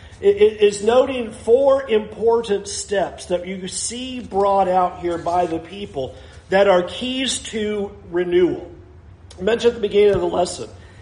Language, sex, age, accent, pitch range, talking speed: English, male, 40-59, American, 145-215 Hz, 150 wpm